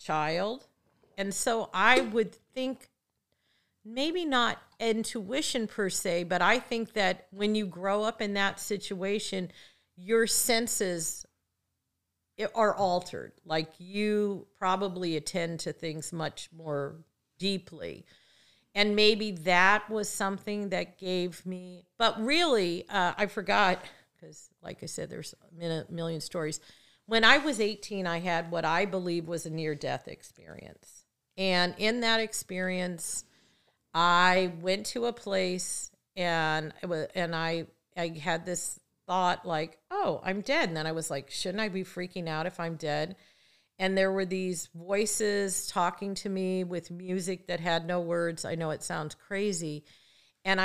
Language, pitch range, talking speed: English, 170-205 Hz, 145 wpm